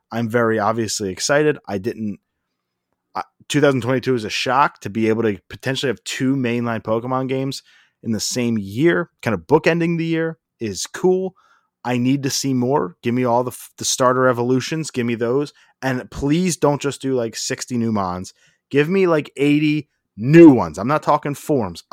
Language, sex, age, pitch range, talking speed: English, male, 30-49, 105-140 Hz, 180 wpm